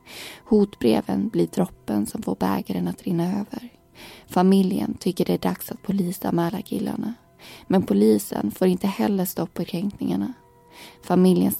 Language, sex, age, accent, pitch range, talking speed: Swedish, female, 20-39, native, 165-205 Hz, 135 wpm